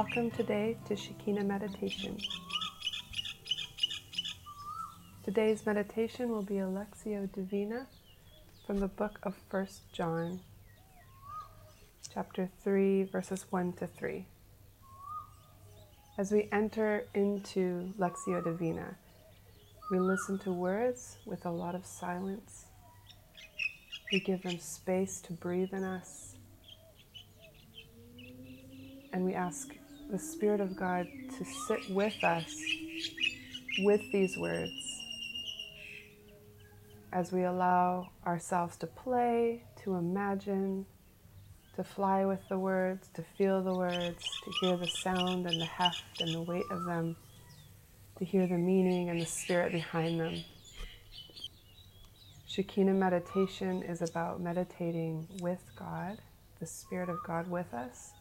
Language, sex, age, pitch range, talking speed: English, female, 30-49, 125-195 Hz, 115 wpm